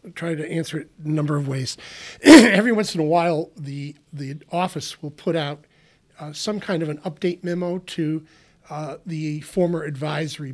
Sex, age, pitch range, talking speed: male, 40-59, 145-170 Hz, 180 wpm